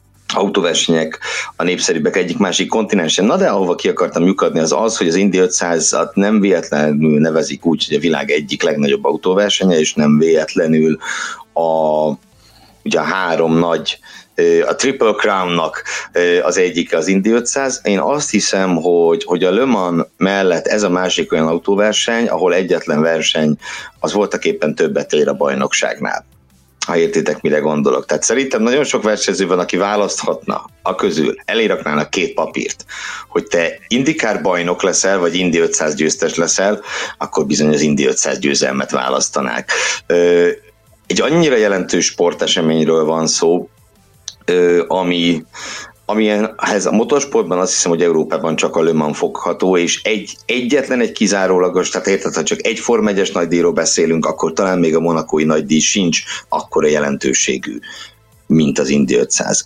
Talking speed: 150 wpm